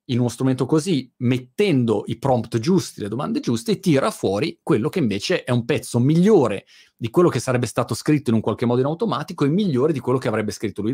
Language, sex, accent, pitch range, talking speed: Italian, male, native, 115-155 Hz, 220 wpm